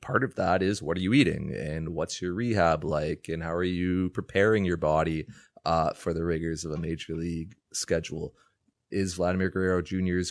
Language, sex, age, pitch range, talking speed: English, male, 30-49, 85-95 Hz, 190 wpm